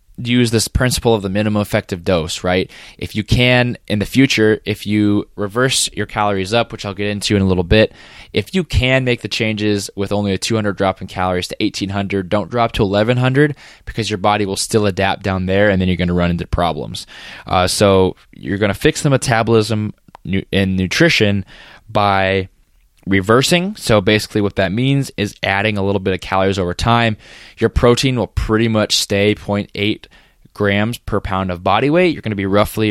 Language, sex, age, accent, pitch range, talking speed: English, male, 20-39, American, 95-110 Hz, 195 wpm